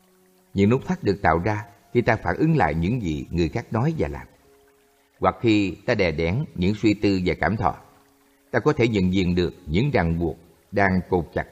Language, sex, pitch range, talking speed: Vietnamese, male, 90-120 Hz, 215 wpm